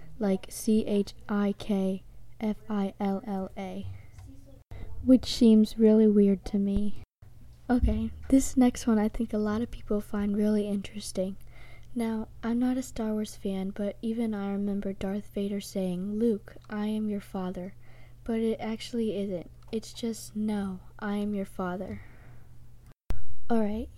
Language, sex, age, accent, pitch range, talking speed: English, female, 20-39, American, 190-220 Hz, 130 wpm